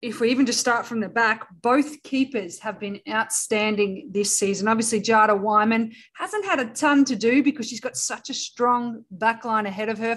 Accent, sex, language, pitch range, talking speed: Australian, female, English, 215-260 Hz, 200 wpm